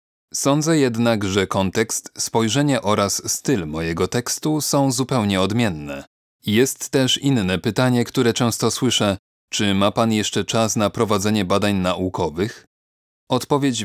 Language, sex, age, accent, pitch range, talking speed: Polish, male, 30-49, native, 100-120 Hz, 125 wpm